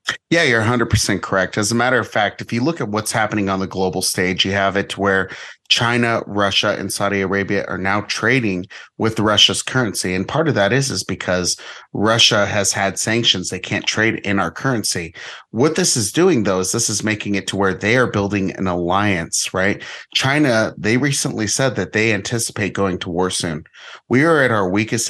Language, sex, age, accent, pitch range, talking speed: English, male, 30-49, American, 95-115 Hz, 205 wpm